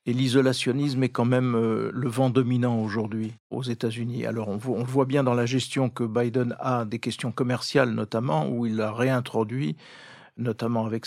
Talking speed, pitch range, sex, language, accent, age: 180 wpm, 115-135 Hz, male, French, French, 50-69